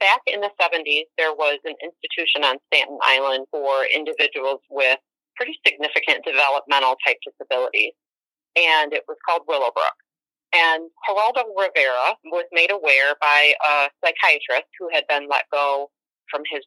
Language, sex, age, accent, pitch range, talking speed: English, female, 40-59, American, 140-180 Hz, 145 wpm